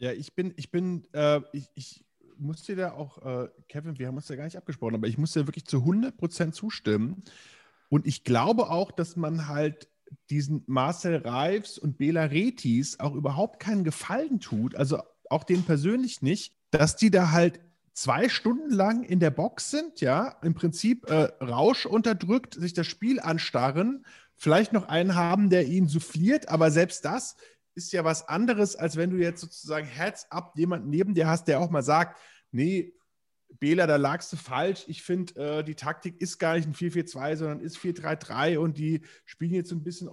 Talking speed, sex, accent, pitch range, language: 190 wpm, male, German, 150-185 Hz, German